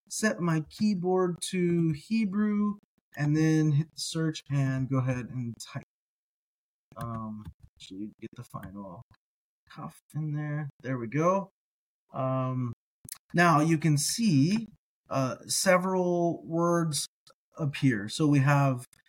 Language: English